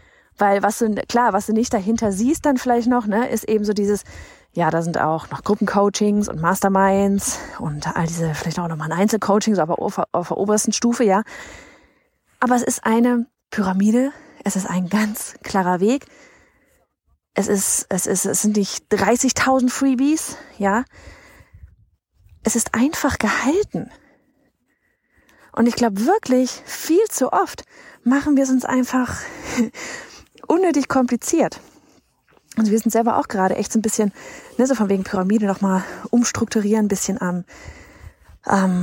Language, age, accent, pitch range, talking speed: German, 30-49, German, 200-255 Hz, 150 wpm